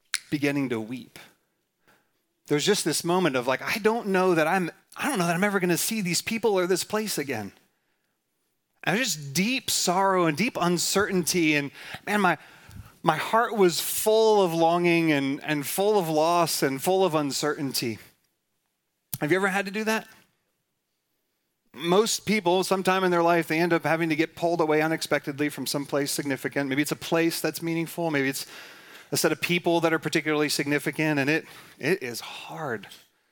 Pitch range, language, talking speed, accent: 155-190 Hz, English, 180 wpm, American